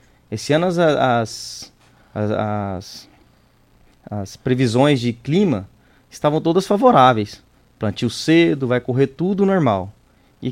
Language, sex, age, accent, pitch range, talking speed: Portuguese, male, 20-39, Brazilian, 125-165 Hz, 95 wpm